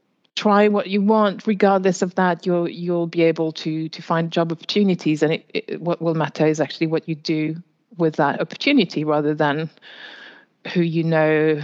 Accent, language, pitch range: British, English, 160-195 Hz